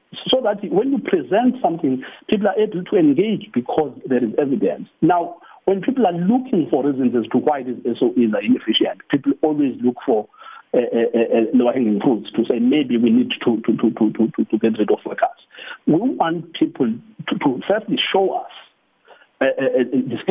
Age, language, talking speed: 50-69, English, 185 wpm